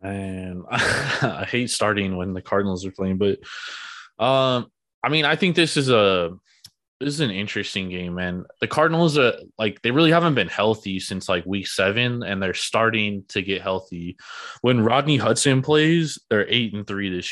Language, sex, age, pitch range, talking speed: English, male, 20-39, 95-125 Hz, 185 wpm